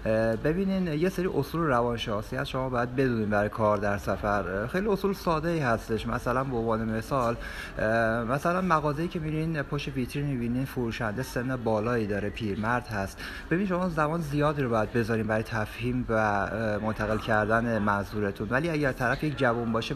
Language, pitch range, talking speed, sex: Persian, 110-135 Hz, 160 wpm, male